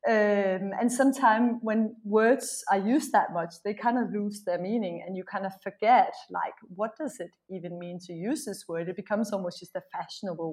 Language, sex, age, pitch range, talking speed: English, female, 30-49, 195-250 Hz, 205 wpm